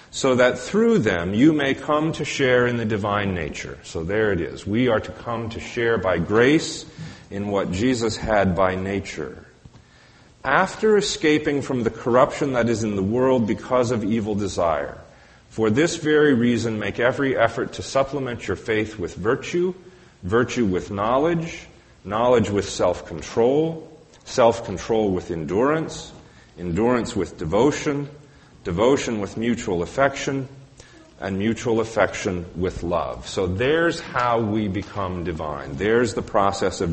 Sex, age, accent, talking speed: male, 40-59, American, 145 wpm